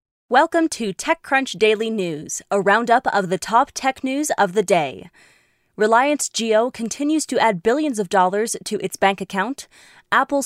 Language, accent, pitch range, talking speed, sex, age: English, American, 200-245 Hz, 160 wpm, female, 20-39